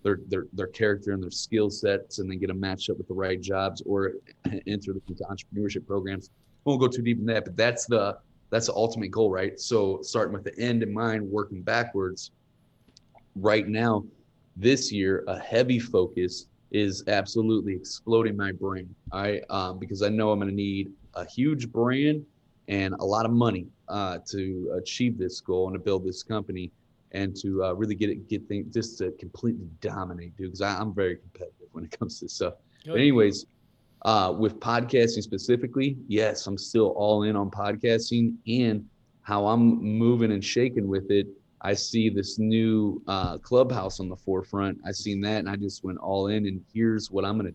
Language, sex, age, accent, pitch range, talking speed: English, male, 30-49, American, 95-115 Hz, 195 wpm